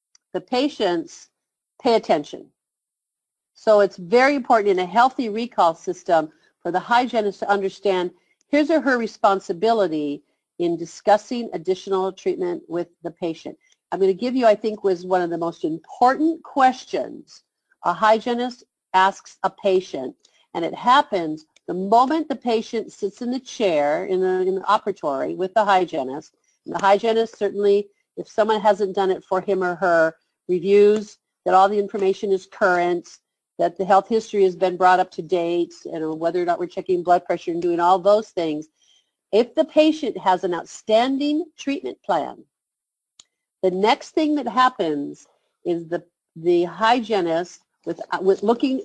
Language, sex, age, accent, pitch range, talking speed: English, female, 50-69, American, 180-230 Hz, 155 wpm